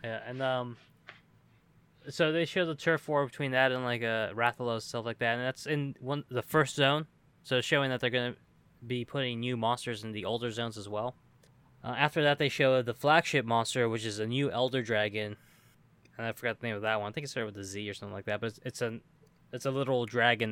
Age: 20-39